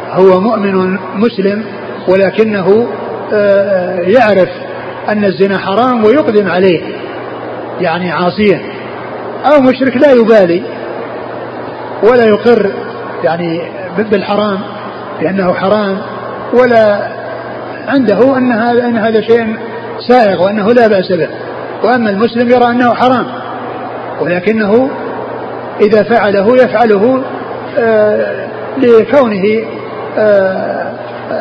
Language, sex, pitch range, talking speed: Arabic, male, 185-235 Hz, 85 wpm